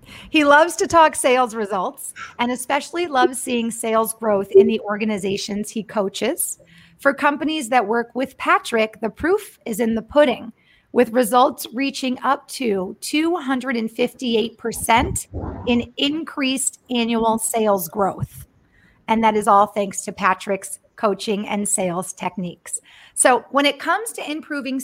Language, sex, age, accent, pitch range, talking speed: English, female, 40-59, American, 210-270 Hz, 140 wpm